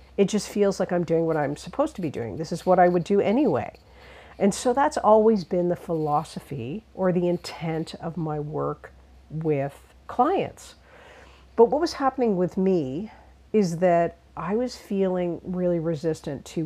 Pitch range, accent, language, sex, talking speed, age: 150-190 Hz, American, English, female, 175 wpm, 50-69